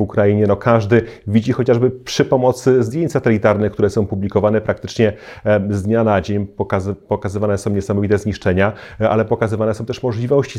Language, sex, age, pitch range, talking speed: Polish, male, 30-49, 105-125 Hz, 140 wpm